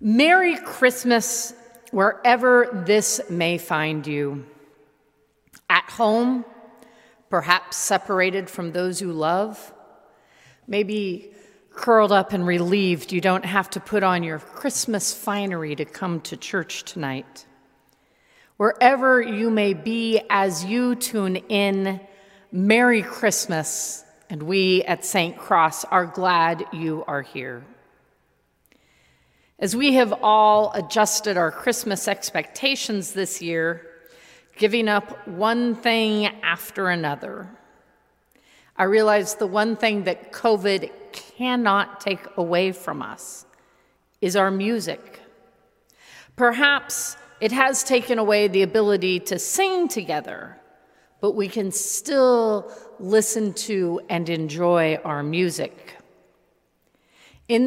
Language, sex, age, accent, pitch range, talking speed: English, female, 40-59, American, 170-225 Hz, 110 wpm